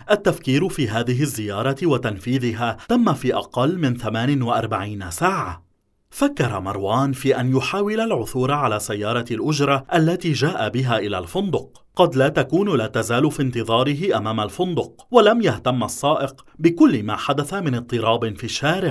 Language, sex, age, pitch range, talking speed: English, male, 30-49, 120-170 Hz, 145 wpm